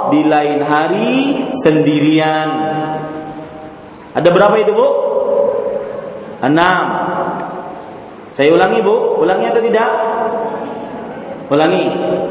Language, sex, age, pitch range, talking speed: Malay, male, 40-59, 165-260 Hz, 80 wpm